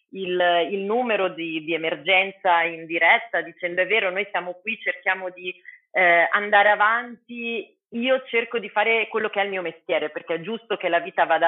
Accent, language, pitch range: native, Italian, 175-215 Hz